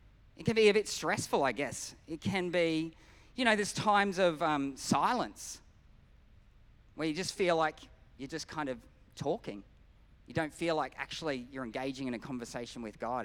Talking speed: 180 wpm